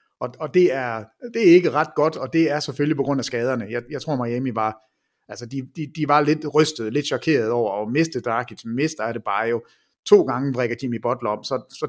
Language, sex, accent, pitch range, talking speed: English, male, Danish, 125-175 Hz, 245 wpm